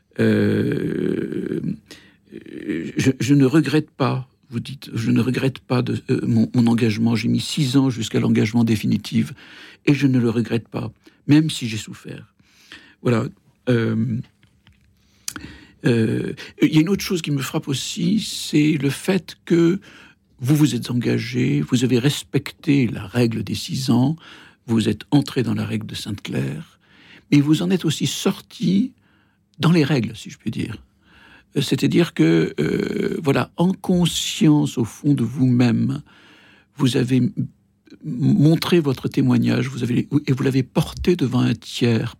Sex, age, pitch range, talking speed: male, 60-79, 115-155 Hz, 155 wpm